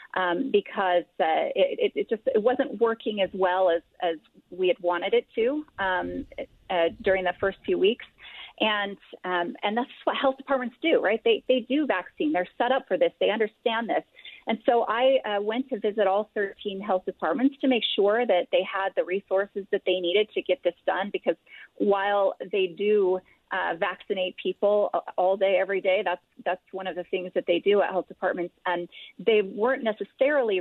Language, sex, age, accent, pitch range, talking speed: English, female, 30-49, American, 185-250 Hz, 195 wpm